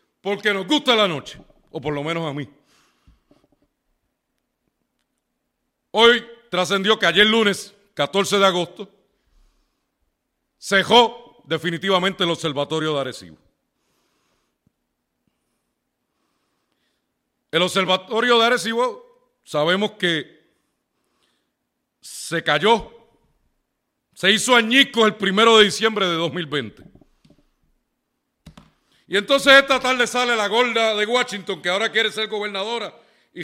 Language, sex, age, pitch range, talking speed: Spanish, male, 40-59, 180-235 Hz, 100 wpm